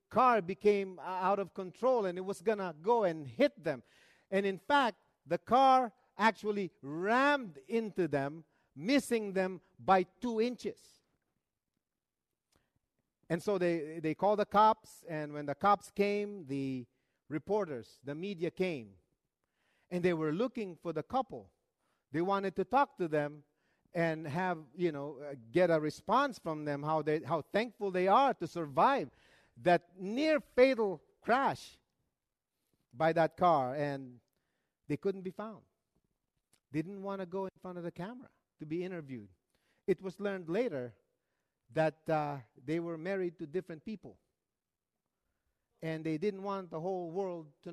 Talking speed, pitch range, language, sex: 150 wpm, 150-200 Hz, English, male